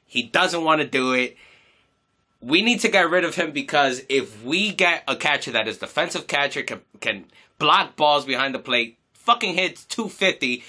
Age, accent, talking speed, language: 20-39, American, 185 wpm, English